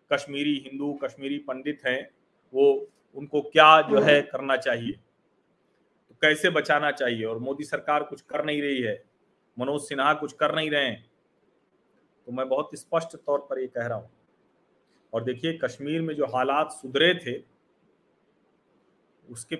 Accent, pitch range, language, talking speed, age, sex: native, 120-150 Hz, Hindi, 155 wpm, 40-59, male